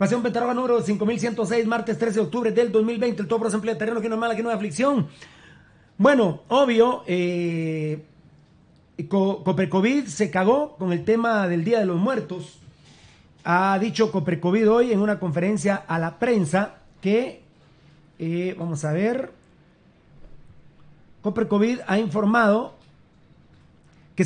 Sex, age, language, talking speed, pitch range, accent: male, 40-59, Spanish, 140 wpm, 155-220 Hz, Mexican